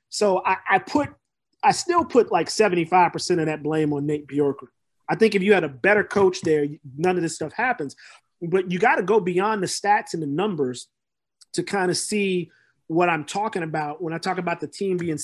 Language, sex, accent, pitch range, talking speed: English, male, American, 160-210 Hz, 220 wpm